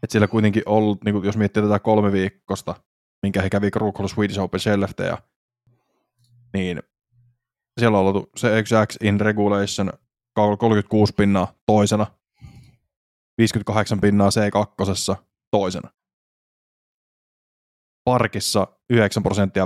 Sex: male